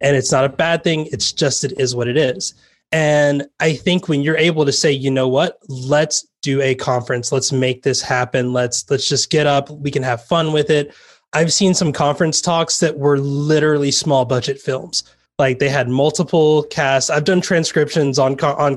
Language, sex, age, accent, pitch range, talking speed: English, male, 20-39, American, 130-150 Hz, 205 wpm